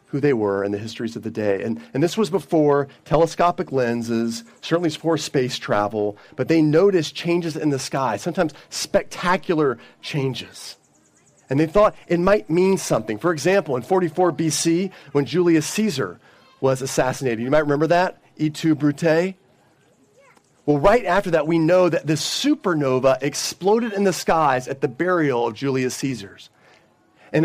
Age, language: 40-59, English